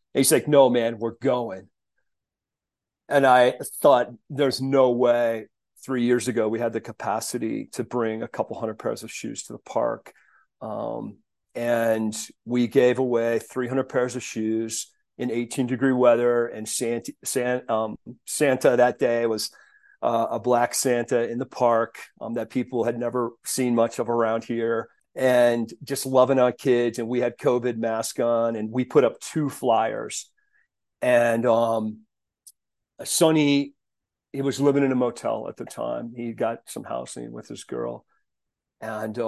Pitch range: 115-130 Hz